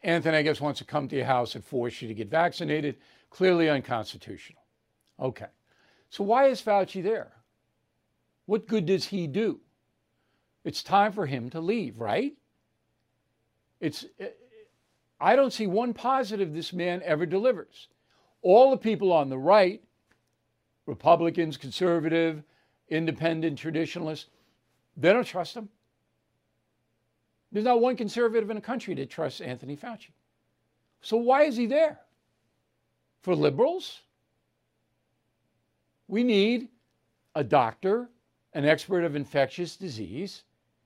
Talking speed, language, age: 125 wpm, English, 60-79